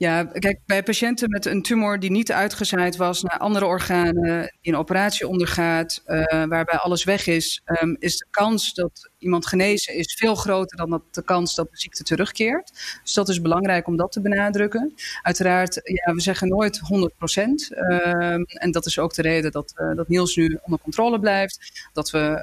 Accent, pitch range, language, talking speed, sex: Dutch, 165-205 Hz, Dutch, 180 wpm, female